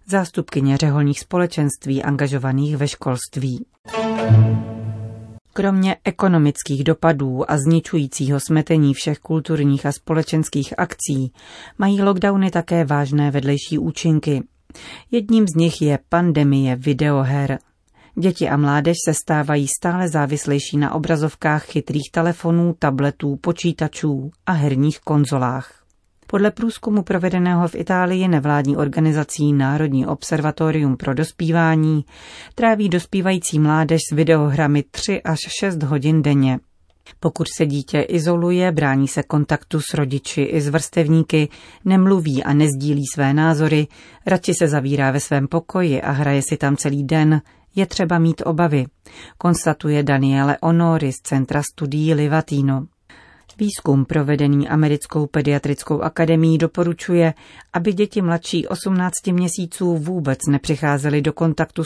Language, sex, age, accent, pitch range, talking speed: Czech, female, 30-49, native, 140-170 Hz, 115 wpm